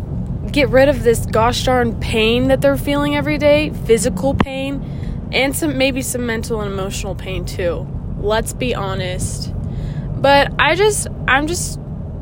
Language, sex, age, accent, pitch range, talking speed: English, female, 20-39, American, 190-245 Hz, 150 wpm